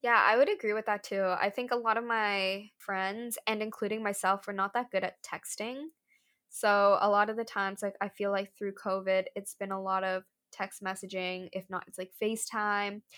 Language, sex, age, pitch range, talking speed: English, female, 10-29, 190-225 Hz, 215 wpm